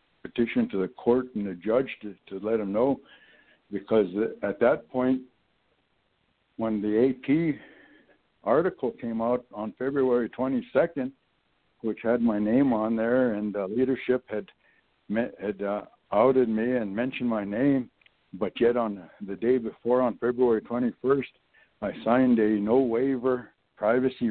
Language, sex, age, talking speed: English, male, 60-79, 150 wpm